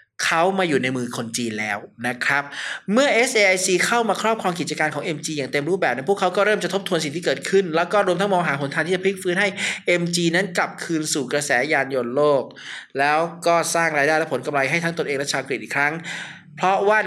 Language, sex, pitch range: Thai, male, 150-195 Hz